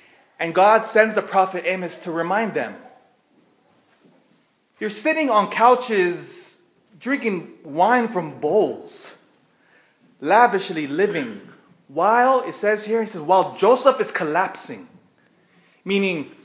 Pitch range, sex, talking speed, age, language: 160-250 Hz, male, 110 wpm, 20-39, English